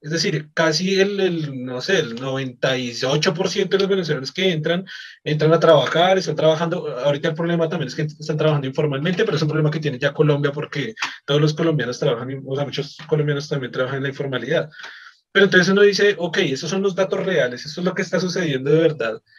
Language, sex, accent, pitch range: Spanish, male, Colombian, 150-185 Hz